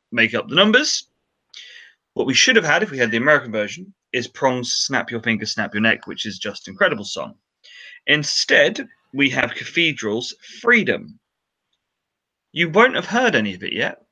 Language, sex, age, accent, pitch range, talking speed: English, male, 30-49, British, 115-160 Hz, 180 wpm